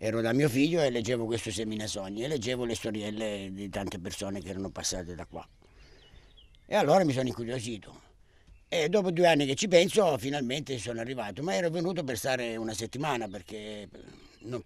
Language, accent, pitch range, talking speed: Italian, native, 105-130 Hz, 185 wpm